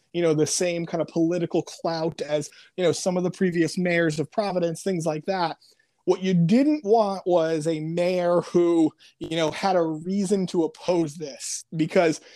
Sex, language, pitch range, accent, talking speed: male, English, 160-195 Hz, American, 185 wpm